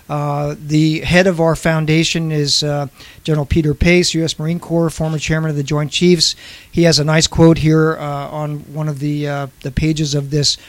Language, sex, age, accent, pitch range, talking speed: English, male, 50-69, American, 145-165 Hz, 200 wpm